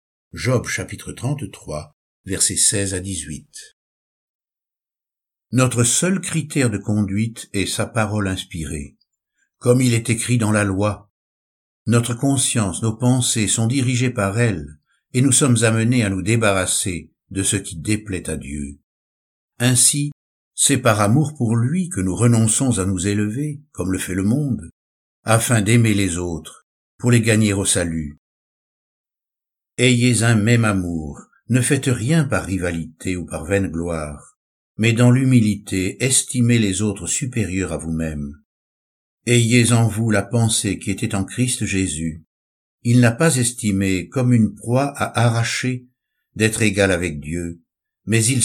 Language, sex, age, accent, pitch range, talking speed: French, male, 60-79, French, 90-120 Hz, 145 wpm